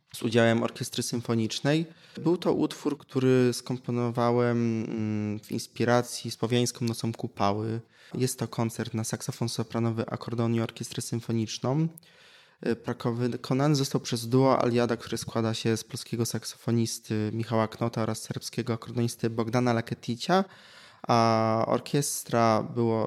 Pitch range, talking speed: 115-130 Hz, 115 wpm